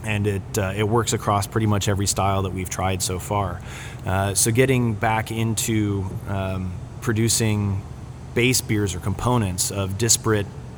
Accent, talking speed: American, 155 wpm